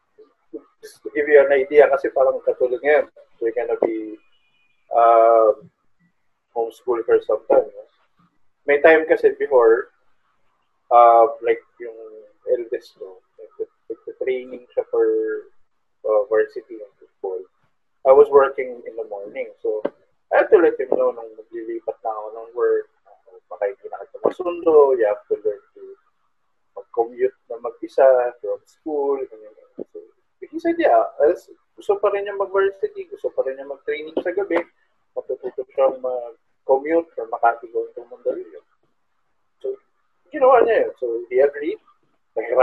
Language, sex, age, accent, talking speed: Filipino, male, 20-39, native, 135 wpm